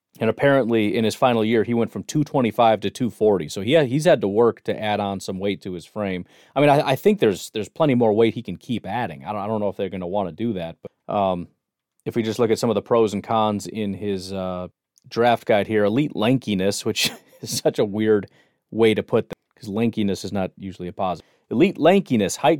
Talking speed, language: 250 wpm, English